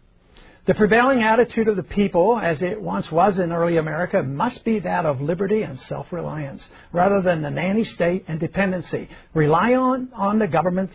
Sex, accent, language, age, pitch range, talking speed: male, American, English, 60-79, 165-220 Hz, 175 wpm